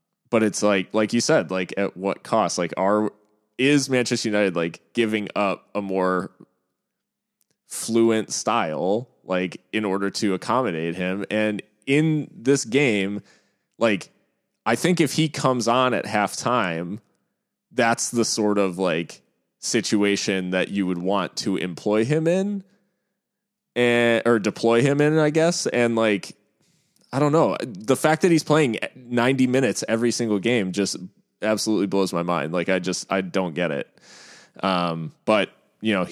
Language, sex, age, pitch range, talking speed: English, male, 20-39, 100-120 Hz, 155 wpm